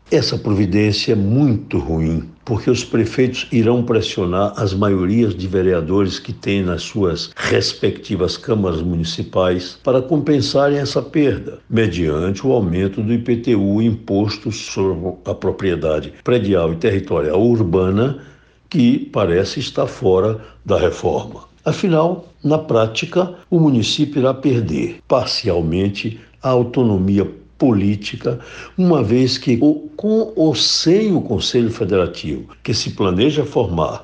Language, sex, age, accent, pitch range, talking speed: Portuguese, male, 60-79, Brazilian, 95-130 Hz, 120 wpm